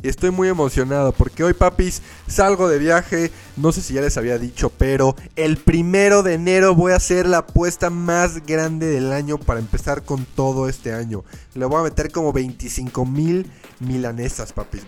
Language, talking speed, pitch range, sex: Spanish, 180 wpm, 130-170 Hz, male